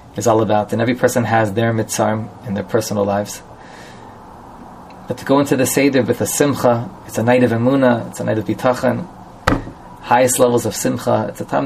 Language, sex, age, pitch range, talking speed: English, male, 20-39, 110-125 Hz, 200 wpm